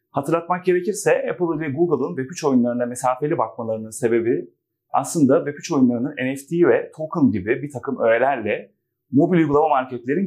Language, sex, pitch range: Turkish, male, 120-180 Hz